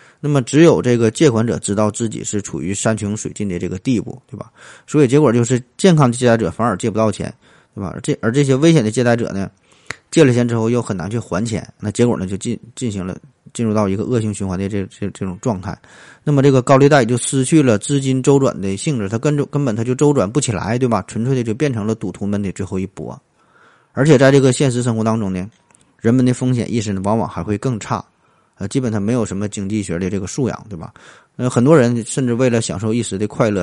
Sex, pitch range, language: male, 100-130 Hz, Chinese